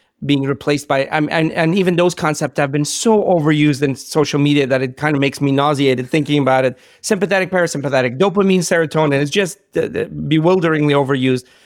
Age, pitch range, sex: 40-59, 145-180 Hz, male